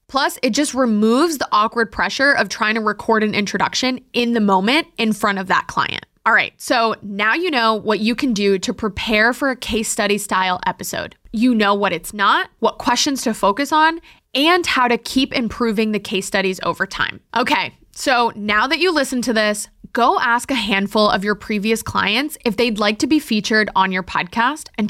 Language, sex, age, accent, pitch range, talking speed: English, female, 20-39, American, 205-260 Hz, 205 wpm